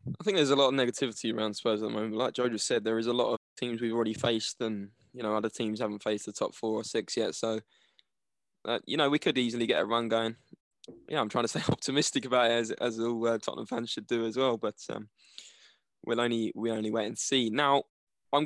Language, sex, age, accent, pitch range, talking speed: English, male, 10-29, British, 115-135 Hz, 255 wpm